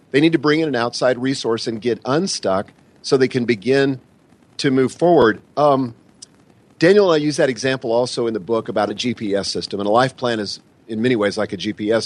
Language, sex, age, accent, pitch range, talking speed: English, male, 40-59, American, 115-140 Hz, 215 wpm